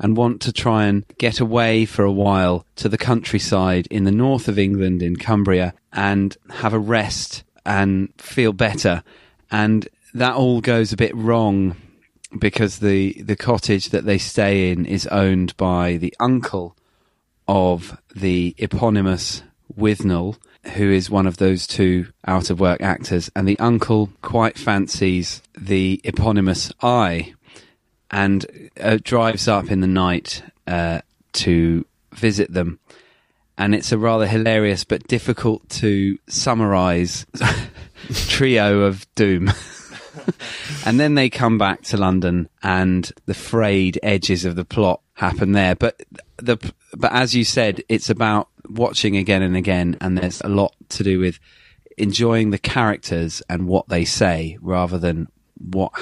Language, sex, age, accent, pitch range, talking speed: English, male, 30-49, British, 90-110 Hz, 145 wpm